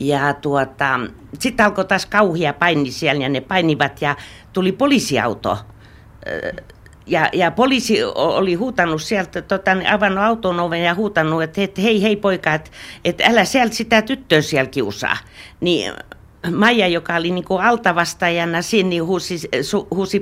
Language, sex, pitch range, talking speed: Finnish, female, 165-205 Hz, 150 wpm